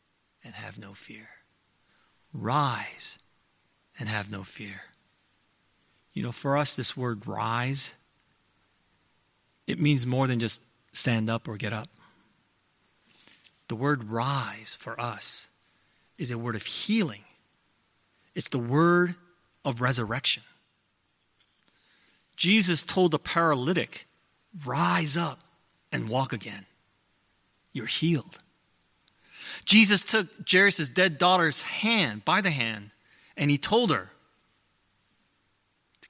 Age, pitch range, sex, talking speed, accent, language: 40-59, 110-175 Hz, male, 110 wpm, American, English